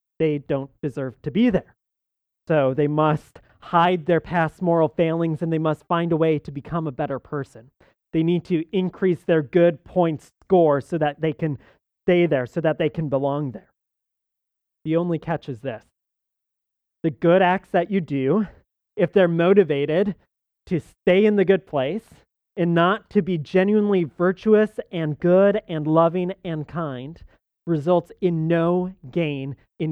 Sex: male